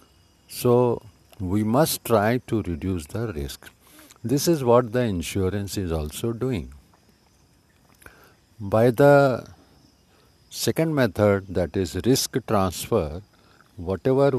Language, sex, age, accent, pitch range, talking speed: Hindi, male, 50-69, native, 90-125 Hz, 105 wpm